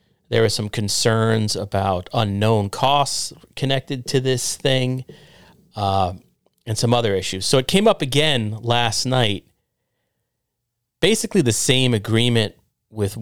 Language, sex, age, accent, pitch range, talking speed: English, male, 30-49, American, 100-125 Hz, 125 wpm